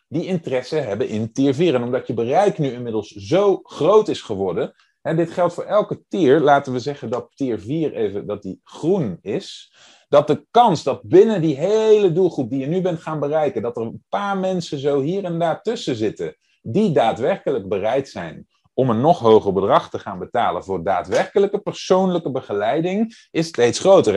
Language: Dutch